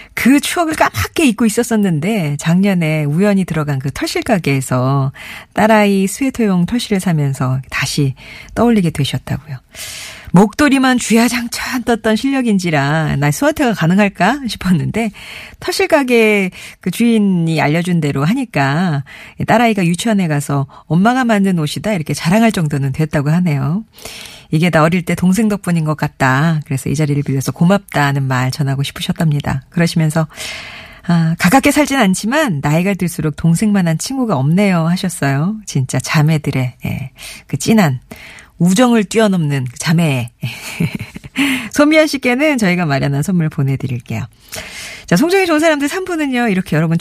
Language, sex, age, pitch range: Korean, female, 40-59, 150-230 Hz